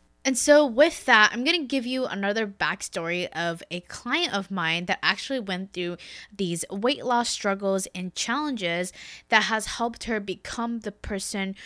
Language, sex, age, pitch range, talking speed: English, female, 10-29, 180-245 Hz, 170 wpm